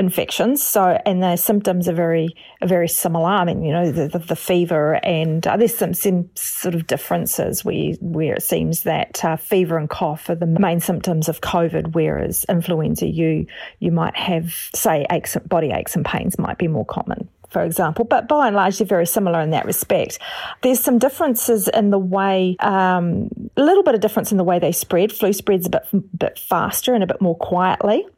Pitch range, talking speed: 175-225 Hz, 205 wpm